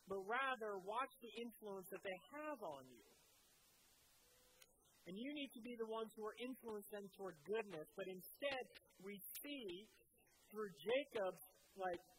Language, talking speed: English, 150 wpm